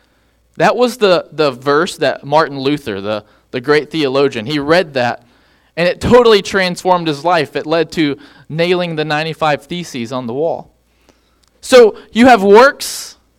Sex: male